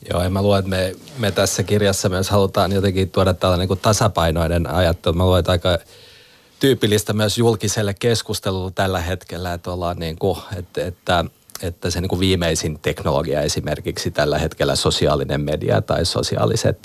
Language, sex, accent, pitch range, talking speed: Finnish, male, native, 85-100 Hz, 165 wpm